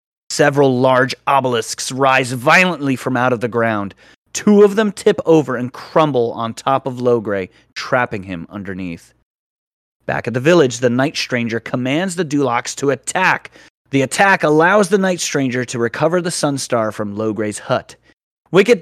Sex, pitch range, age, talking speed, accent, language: male, 115-165 Hz, 30-49, 160 wpm, American, English